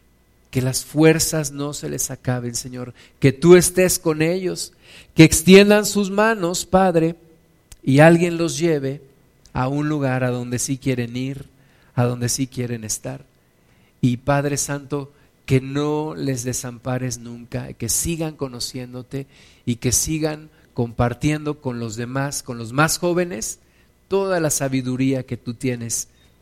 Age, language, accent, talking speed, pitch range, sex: 50-69, Spanish, Mexican, 145 wpm, 125-160 Hz, male